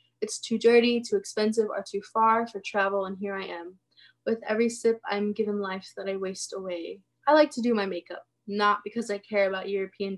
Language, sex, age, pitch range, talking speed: English, female, 20-39, 195-230 Hz, 210 wpm